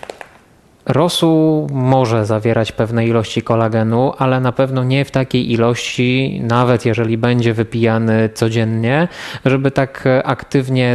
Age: 20-39